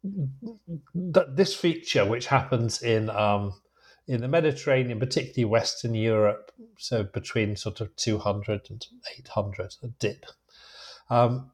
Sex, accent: male, British